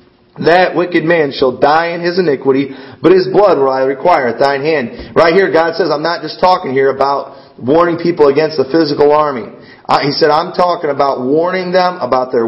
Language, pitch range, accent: English, 130-180 Hz, American